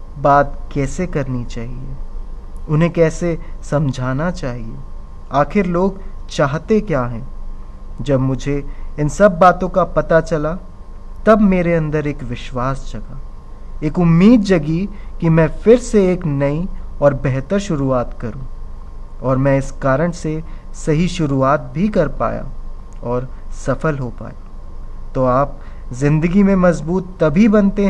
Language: Hindi